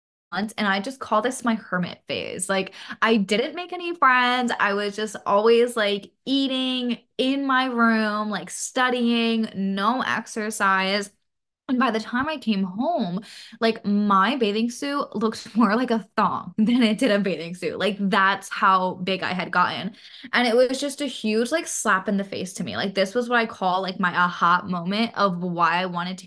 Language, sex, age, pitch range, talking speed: English, female, 10-29, 190-235 Hz, 190 wpm